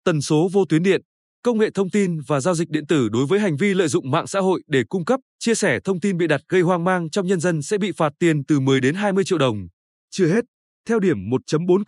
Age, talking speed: 20-39, 270 wpm